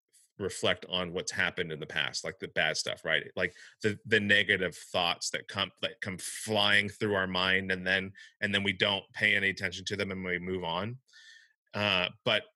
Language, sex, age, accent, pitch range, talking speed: English, male, 30-49, American, 90-110 Hz, 200 wpm